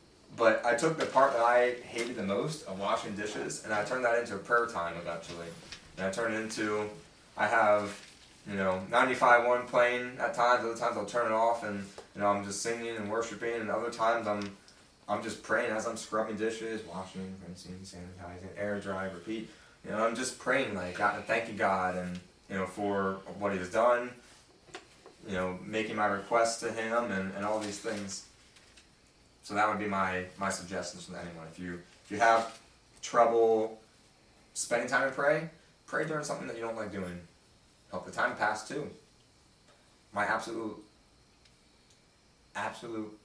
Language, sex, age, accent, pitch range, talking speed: English, male, 20-39, American, 95-115 Hz, 185 wpm